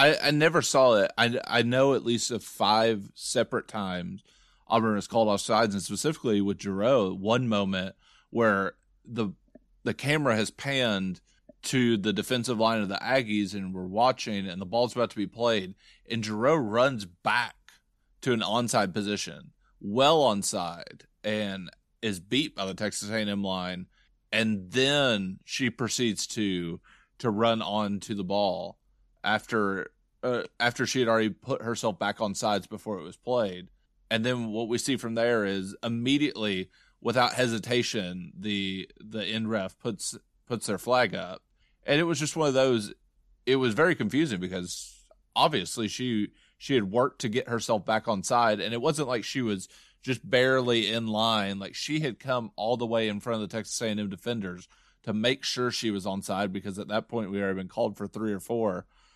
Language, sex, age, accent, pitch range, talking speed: English, male, 30-49, American, 100-120 Hz, 185 wpm